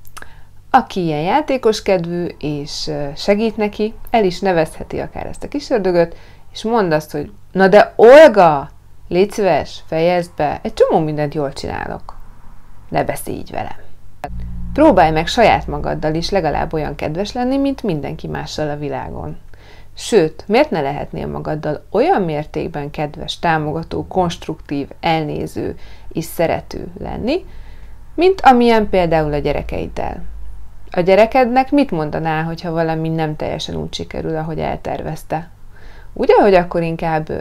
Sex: female